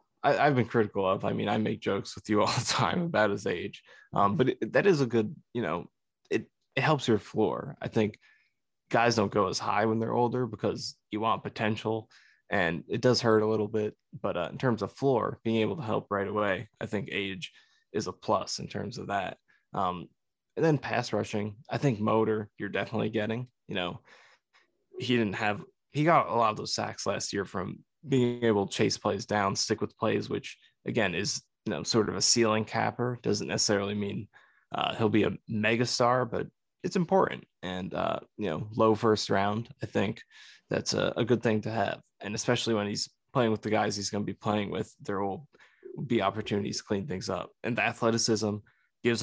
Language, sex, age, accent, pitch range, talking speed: English, male, 20-39, American, 105-120 Hz, 210 wpm